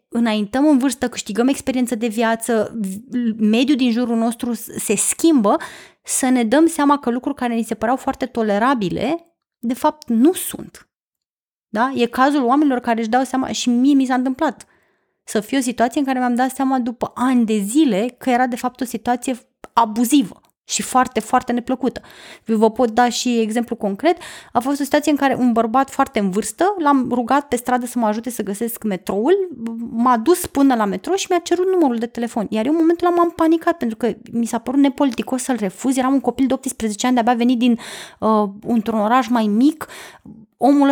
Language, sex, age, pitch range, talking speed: Romanian, female, 20-39, 230-280 Hz, 195 wpm